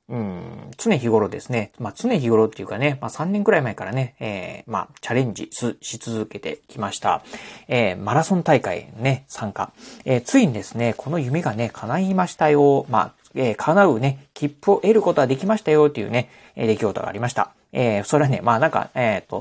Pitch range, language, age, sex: 115-180 Hz, Japanese, 40-59, male